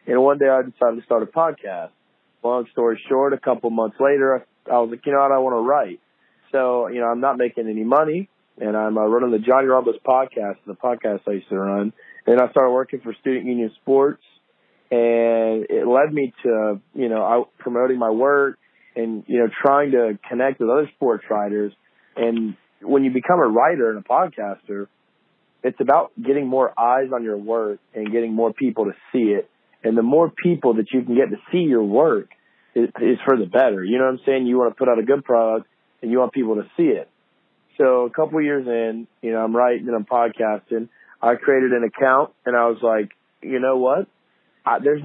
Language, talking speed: English, 215 wpm